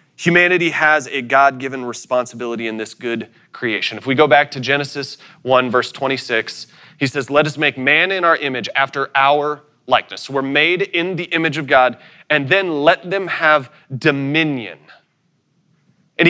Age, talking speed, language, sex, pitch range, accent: 30-49, 160 wpm, English, male, 135-170 Hz, American